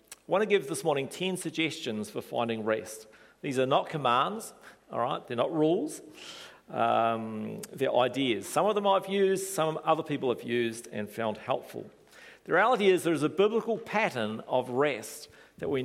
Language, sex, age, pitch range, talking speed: English, male, 40-59, 130-215 Hz, 180 wpm